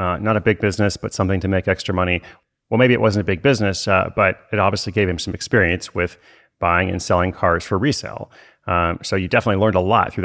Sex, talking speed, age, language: male, 240 wpm, 30-49, English